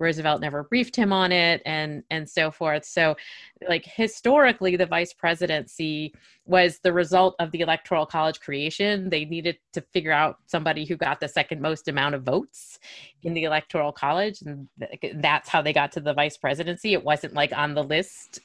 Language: English